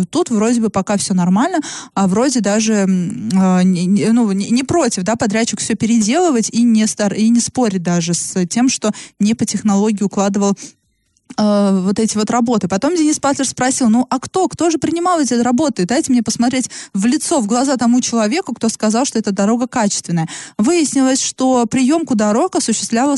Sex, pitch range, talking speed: female, 210-260 Hz, 165 wpm